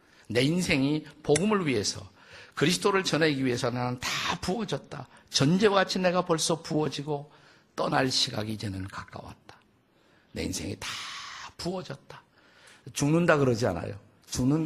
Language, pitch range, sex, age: Korean, 110-155 Hz, male, 50-69